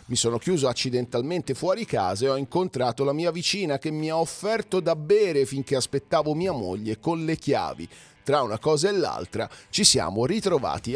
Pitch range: 125-180 Hz